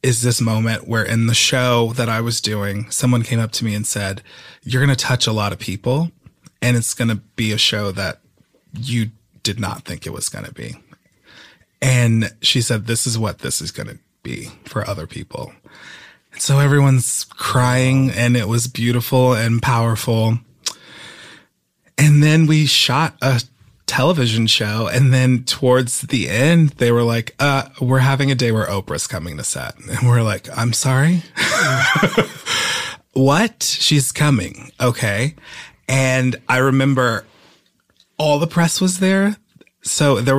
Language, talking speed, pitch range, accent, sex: English, 165 wpm, 115-135 Hz, American, male